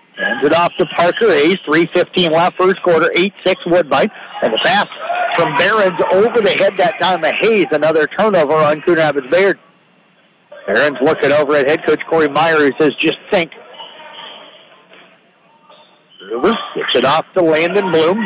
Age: 50-69